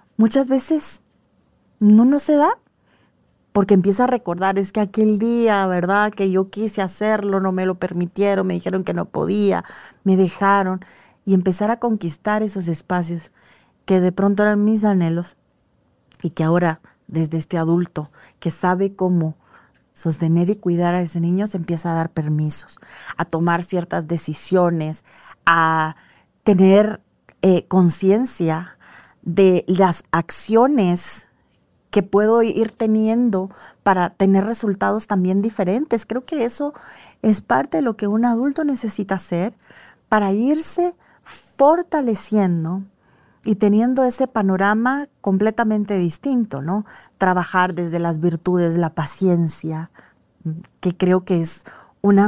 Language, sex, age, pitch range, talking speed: Spanish, female, 40-59, 175-215 Hz, 130 wpm